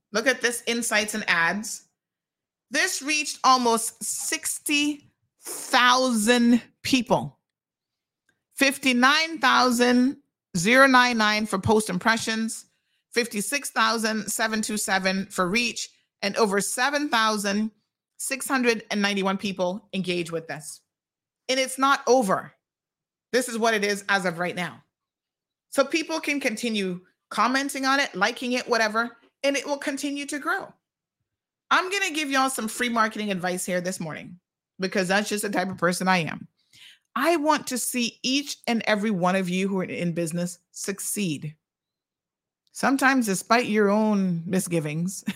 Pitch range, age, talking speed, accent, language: 185-255 Hz, 30-49, 125 wpm, American, English